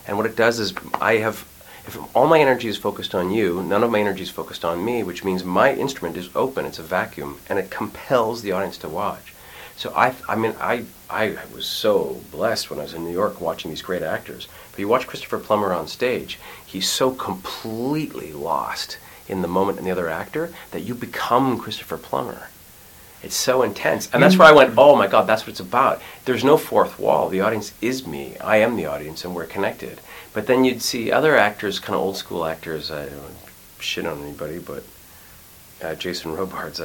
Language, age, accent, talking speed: English, 40-59, American, 215 wpm